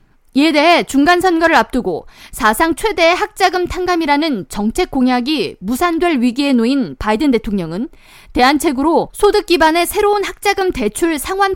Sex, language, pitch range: female, Korean, 240-350 Hz